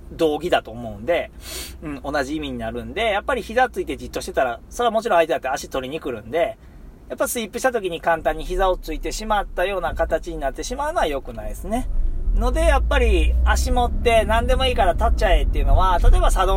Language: Japanese